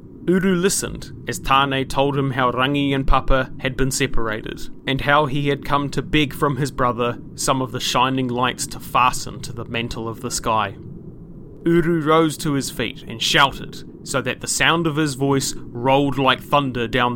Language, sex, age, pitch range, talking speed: English, male, 30-49, 125-150 Hz, 190 wpm